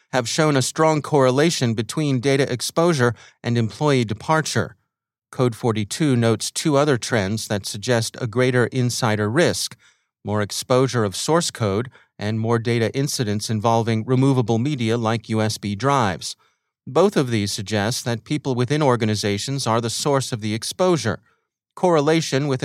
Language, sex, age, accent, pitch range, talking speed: English, male, 30-49, American, 110-140 Hz, 145 wpm